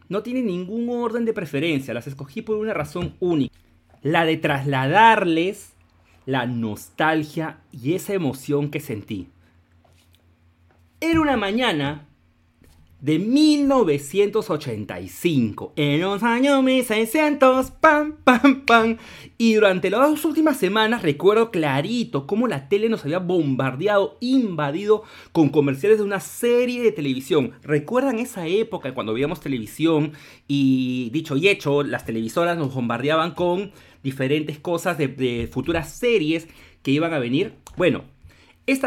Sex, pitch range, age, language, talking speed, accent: male, 130-200 Hz, 30-49, Spanish, 130 wpm, Mexican